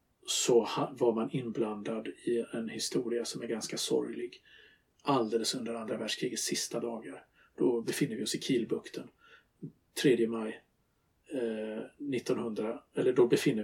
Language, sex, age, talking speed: Swedish, male, 50-69, 130 wpm